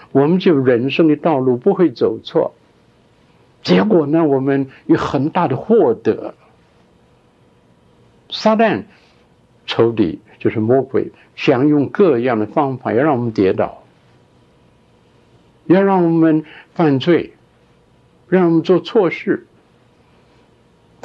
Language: Chinese